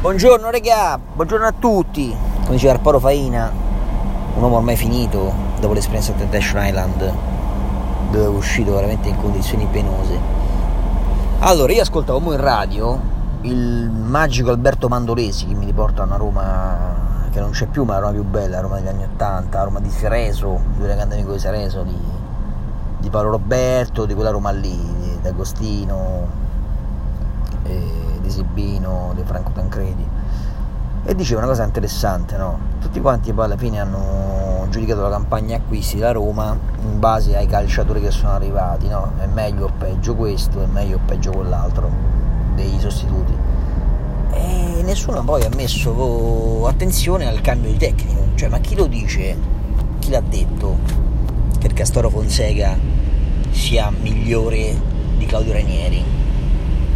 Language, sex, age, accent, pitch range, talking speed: Italian, male, 30-49, native, 90-110 Hz, 155 wpm